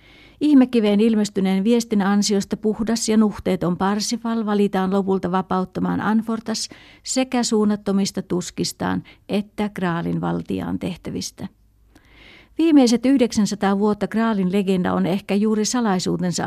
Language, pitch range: Finnish, 180-210 Hz